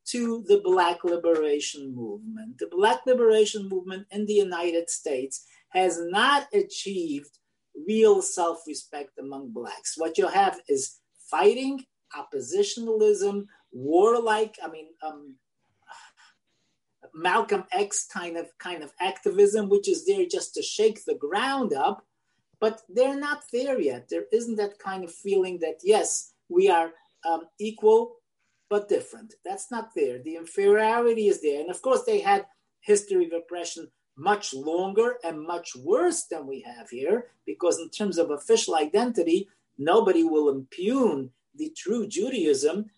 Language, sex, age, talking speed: English, male, 40-59, 140 wpm